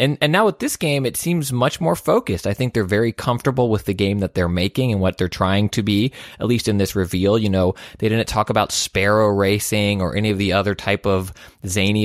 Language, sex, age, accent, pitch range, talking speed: English, male, 20-39, American, 95-115 Hz, 245 wpm